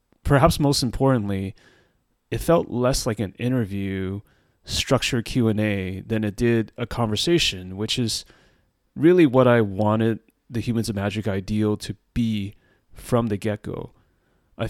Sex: male